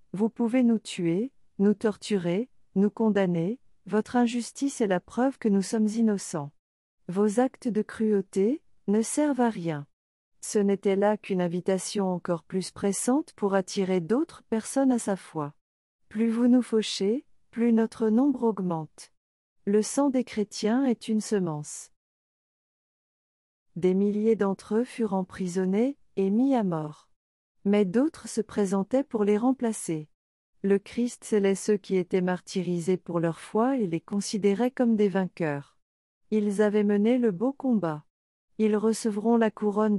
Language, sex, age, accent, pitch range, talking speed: French, female, 40-59, French, 185-230 Hz, 145 wpm